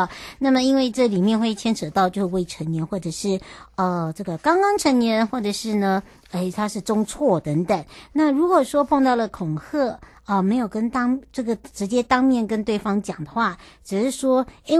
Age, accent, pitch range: 60-79, American, 190-255 Hz